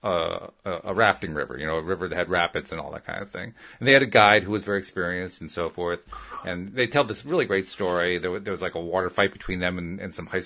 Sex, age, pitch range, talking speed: male, 40-59, 105-145 Hz, 285 wpm